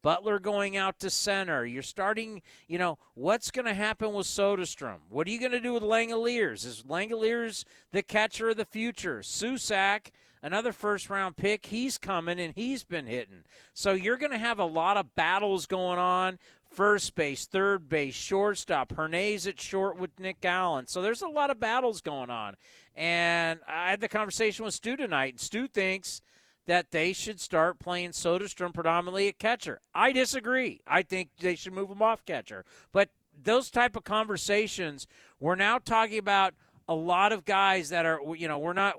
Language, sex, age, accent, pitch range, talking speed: English, male, 50-69, American, 160-205 Hz, 185 wpm